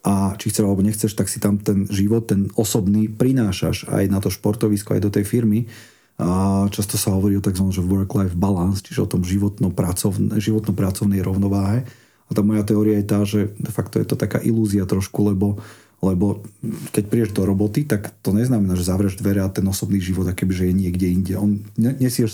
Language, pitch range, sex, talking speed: Slovak, 100-115 Hz, male, 185 wpm